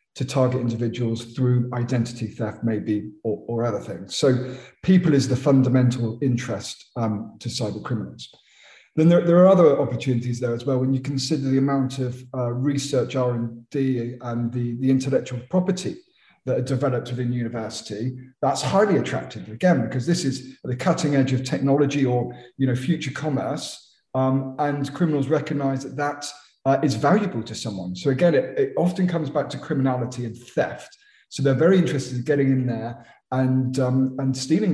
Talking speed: 175 wpm